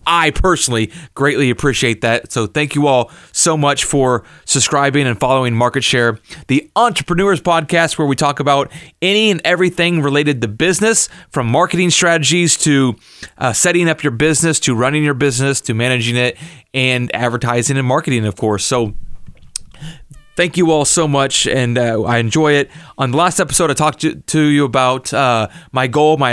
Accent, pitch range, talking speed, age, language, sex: American, 125-160 Hz, 175 wpm, 30-49, English, male